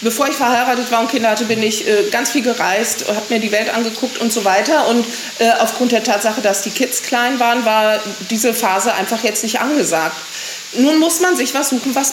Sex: female